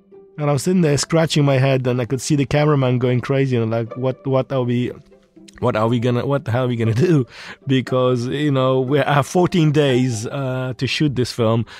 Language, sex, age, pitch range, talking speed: English, male, 20-39, 105-145 Hz, 240 wpm